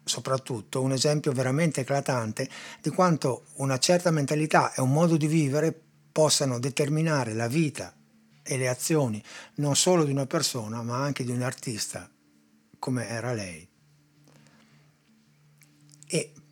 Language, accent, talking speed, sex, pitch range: Italian, native, 130 wpm, male, 120-155 Hz